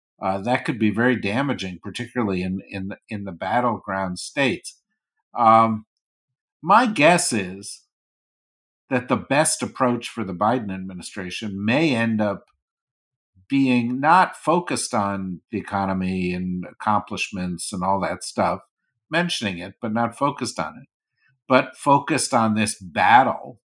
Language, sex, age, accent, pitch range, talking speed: English, male, 50-69, American, 100-135 Hz, 135 wpm